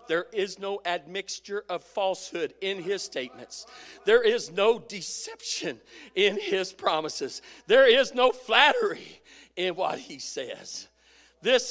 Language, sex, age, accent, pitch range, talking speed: English, male, 40-59, American, 160-250 Hz, 130 wpm